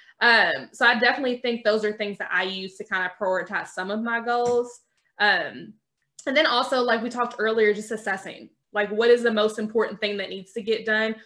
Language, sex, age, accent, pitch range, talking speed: English, female, 20-39, American, 200-240 Hz, 220 wpm